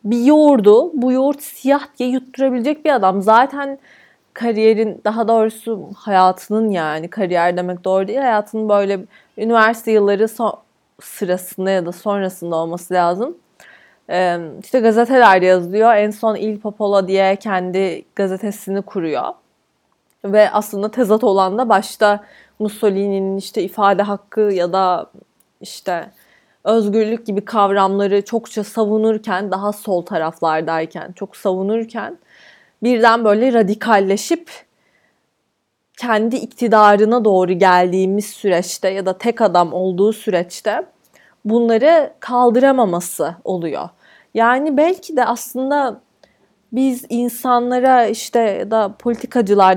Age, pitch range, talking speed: 20-39, 195-235 Hz, 110 wpm